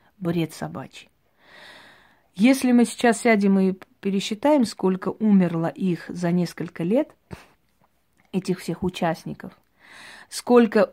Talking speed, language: 100 wpm, Russian